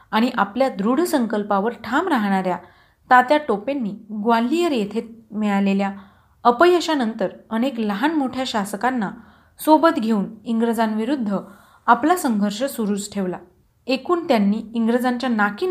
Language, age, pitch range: Marathi, 40-59, 210-260 Hz